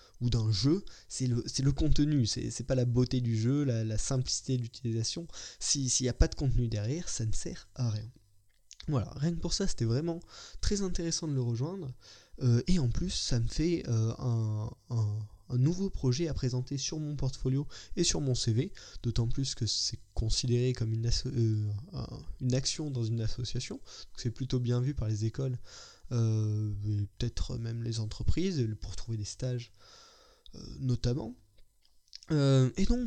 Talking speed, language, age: 185 wpm, French, 20-39